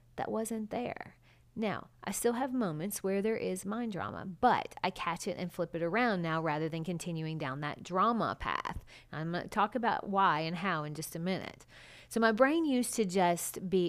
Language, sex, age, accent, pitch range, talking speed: English, female, 30-49, American, 165-230 Hz, 205 wpm